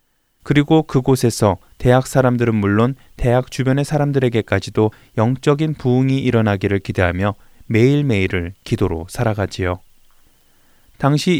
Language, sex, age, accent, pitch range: Korean, male, 20-39, native, 105-140 Hz